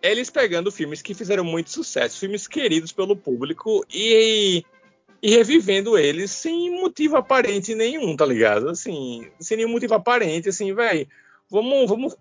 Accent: Brazilian